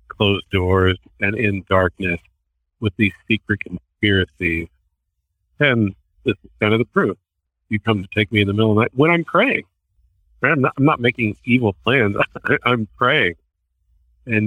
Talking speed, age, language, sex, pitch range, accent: 165 wpm, 50-69, English, male, 80-115 Hz, American